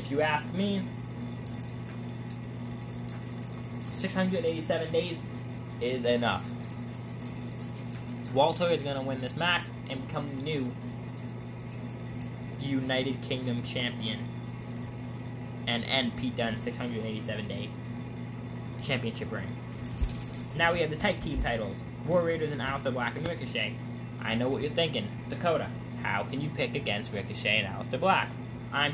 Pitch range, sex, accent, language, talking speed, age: 110-130 Hz, male, American, English, 125 wpm, 20-39